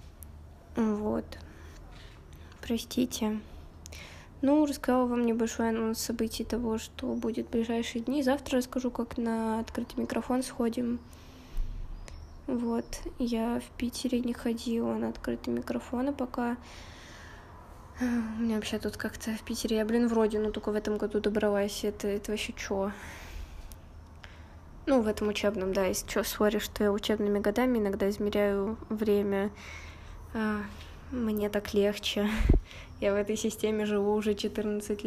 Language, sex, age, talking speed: Russian, female, 20-39, 130 wpm